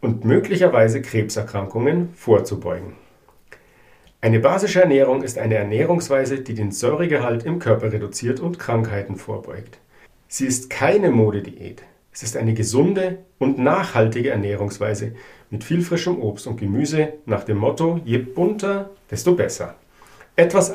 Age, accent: 60-79, German